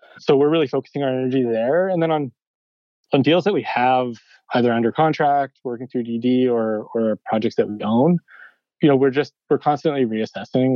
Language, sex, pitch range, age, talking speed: English, male, 110-130 Hz, 20-39, 190 wpm